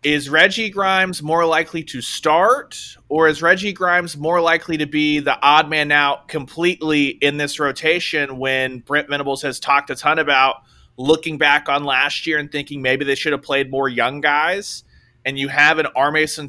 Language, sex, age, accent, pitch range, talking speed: English, male, 30-49, American, 135-155 Hz, 190 wpm